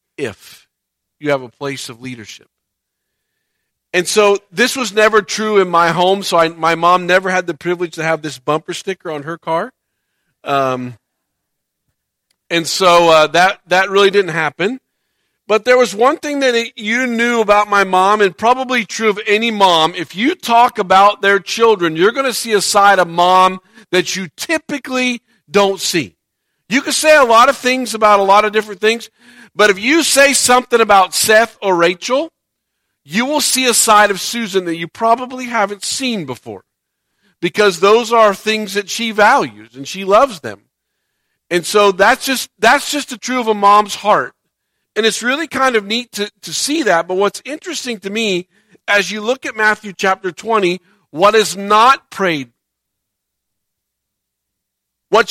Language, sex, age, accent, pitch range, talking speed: English, male, 50-69, American, 180-235 Hz, 175 wpm